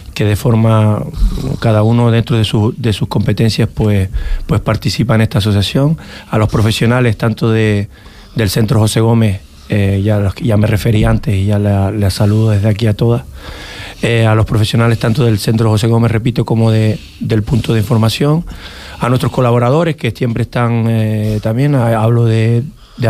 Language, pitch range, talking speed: Spanish, 110-120 Hz, 175 wpm